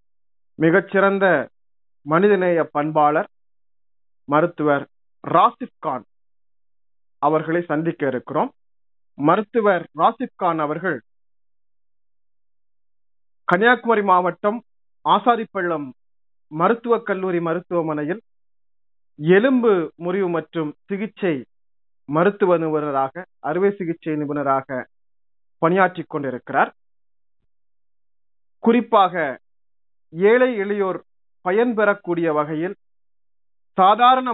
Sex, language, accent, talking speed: male, Tamil, native, 65 wpm